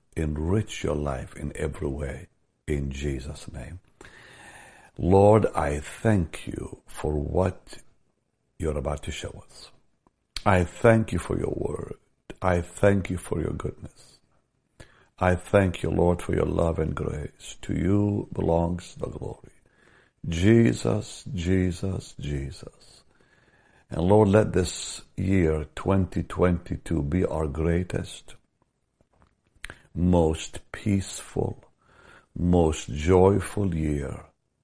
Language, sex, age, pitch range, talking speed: English, male, 60-79, 80-100 Hz, 110 wpm